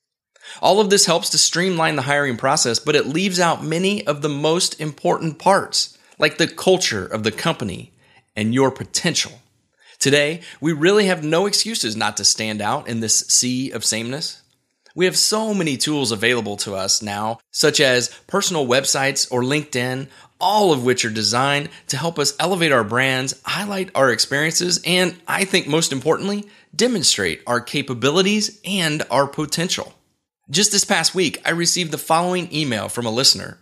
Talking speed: 170 wpm